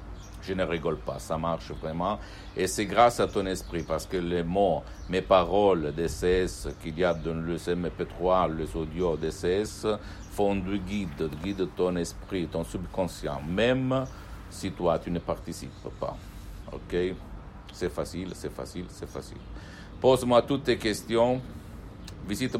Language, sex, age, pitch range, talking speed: Italian, male, 60-79, 95-110 Hz, 150 wpm